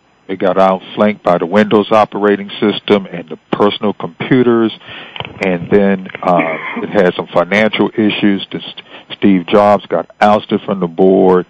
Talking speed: 145 wpm